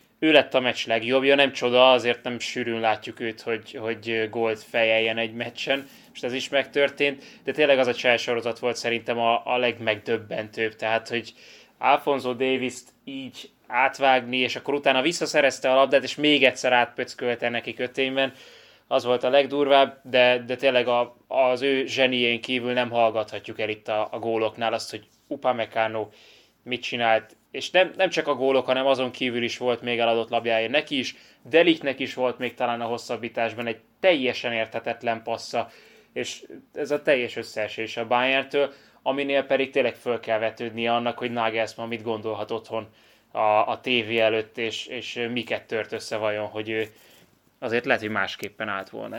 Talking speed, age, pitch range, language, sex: 170 wpm, 20-39, 115-135 Hz, Hungarian, male